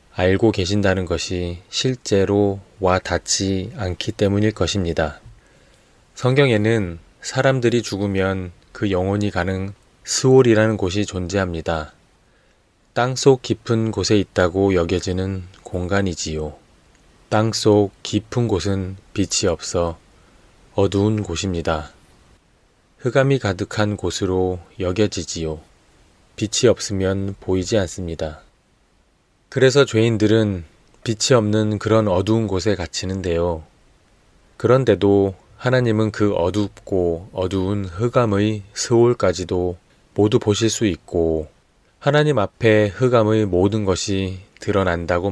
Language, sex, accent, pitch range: Korean, male, native, 90-110 Hz